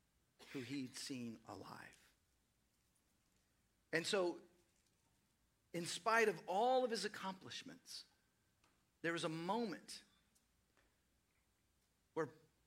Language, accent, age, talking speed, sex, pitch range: English, American, 40-59, 85 wpm, male, 135-195 Hz